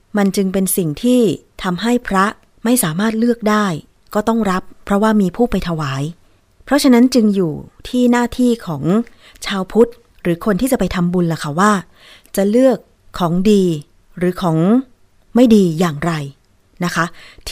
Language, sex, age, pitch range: Thai, female, 30-49, 170-220 Hz